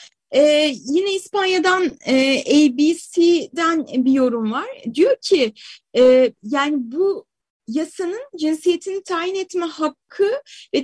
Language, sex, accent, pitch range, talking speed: Turkish, female, native, 265-370 Hz, 105 wpm